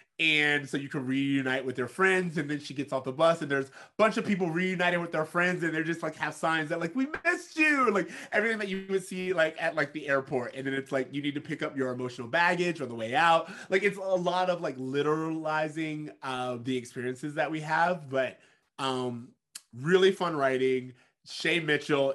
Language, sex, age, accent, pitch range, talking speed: English, male, 30-49, American, 130-165 Hz, 225 wpm